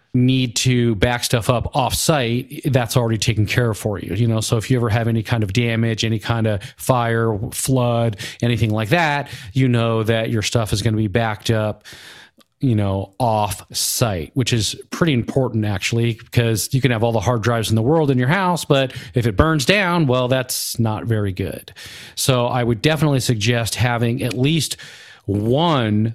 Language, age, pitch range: English, 40-59, 115-130 Hz